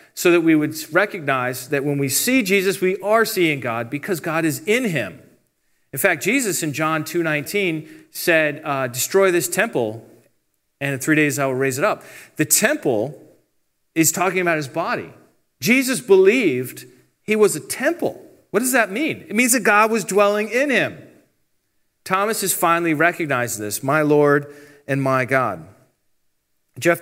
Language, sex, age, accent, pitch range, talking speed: English, male, 40-59, American, 135-180 Hz, 165 wpm